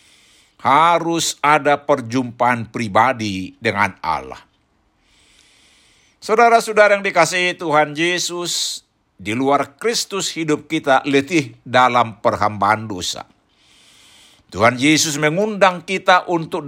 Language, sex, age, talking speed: Indonesian, male, 60-79, 90 wpm